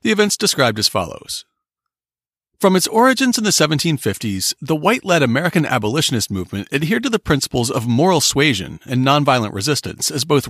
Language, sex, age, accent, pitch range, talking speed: English, male, 40-59, American, 115-165 Hz, 160 wpm